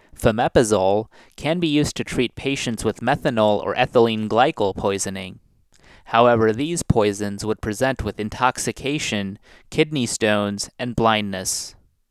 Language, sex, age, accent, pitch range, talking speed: English, male, 20-39, American, 100-125 Hz, 120 wpm